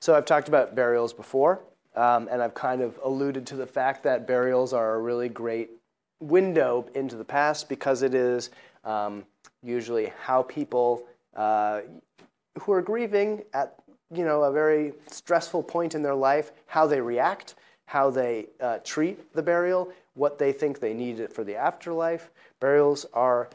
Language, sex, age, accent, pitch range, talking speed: English, male, 30-49, American, 115-145 Hz, 170 wpm